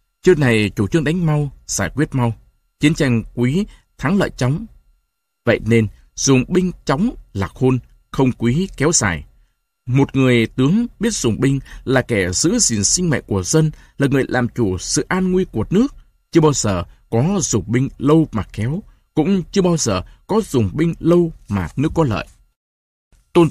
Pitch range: 110-160 Hz